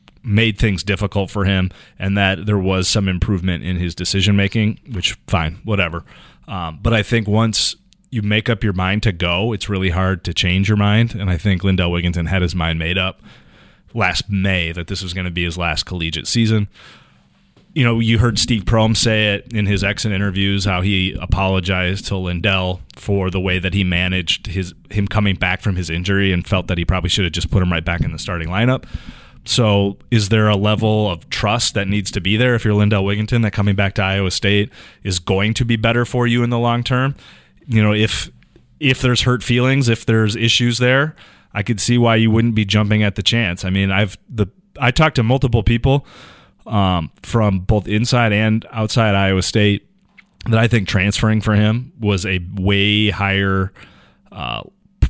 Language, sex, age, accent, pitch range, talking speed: English, male, 30-49, American, 95-115 Hz, 205 wpm